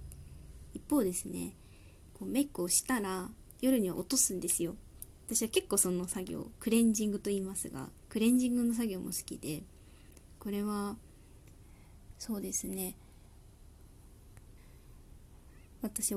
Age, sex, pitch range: 20-39, female, 190-230 Hz